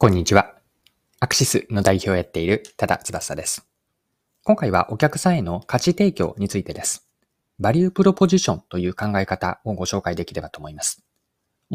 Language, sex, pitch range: Japanese, male, 95-150 Hz